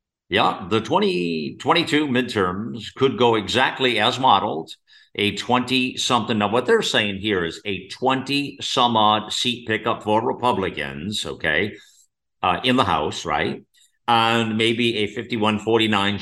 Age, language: 50-69, English